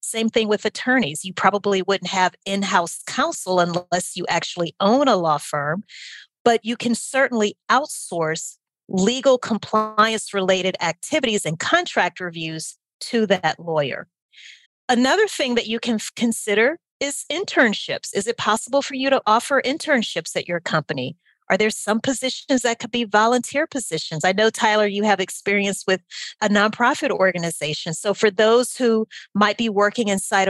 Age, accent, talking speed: 30-49, American, 150 wpm